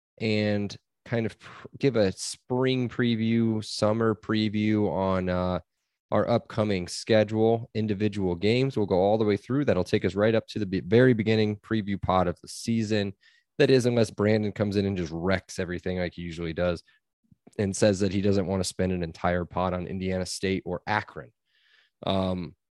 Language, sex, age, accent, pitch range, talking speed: English, male, 20-39, American, 90-115 Hz, 175 wpm